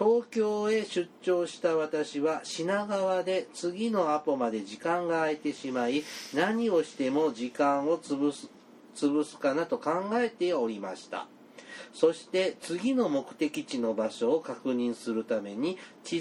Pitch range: 145-210 Hz